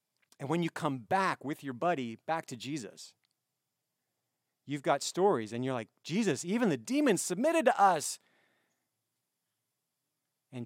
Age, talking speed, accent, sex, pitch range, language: 40-59, 140 wpm, American, male, 125-175 Hz, English